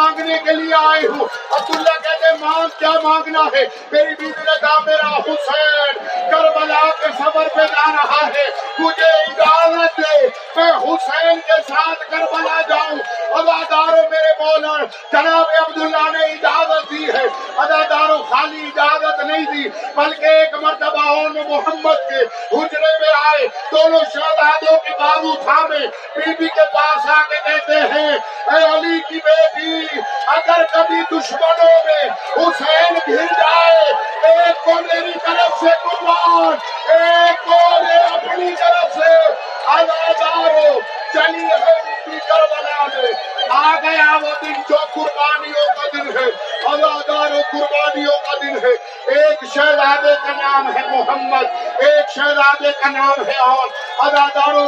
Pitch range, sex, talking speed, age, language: 290-325 Hz, male, 75 wpm, 50-69, Urdu